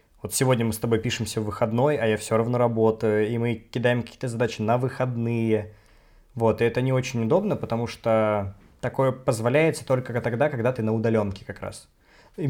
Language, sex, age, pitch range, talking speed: Russian, male, 20-39, 110-135 Hz, 185 wpm